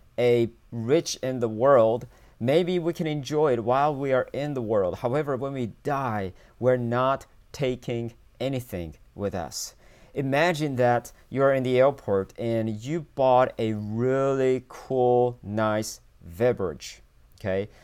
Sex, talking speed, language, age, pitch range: male, 140 wpm, English, 40-59, 110-140 Hz